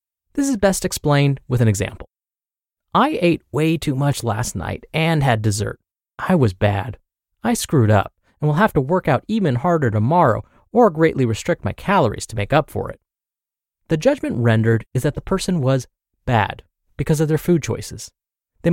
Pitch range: 115-180 Hz